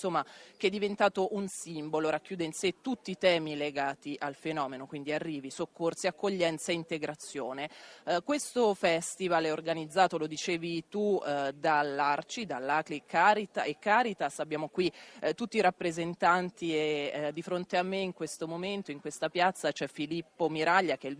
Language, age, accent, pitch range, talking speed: Italian, 30-49, native, 150-175 Hz, 165 wpm